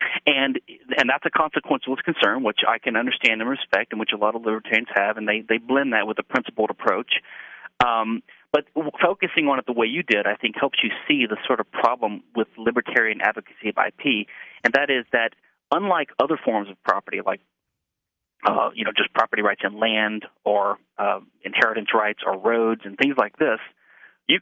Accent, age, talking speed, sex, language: American, 40-59, 195 wpm, male, English